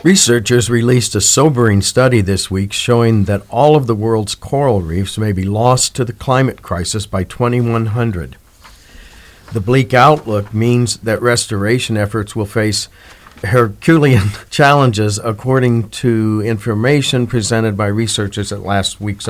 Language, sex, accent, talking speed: English, male, American, 135 wpm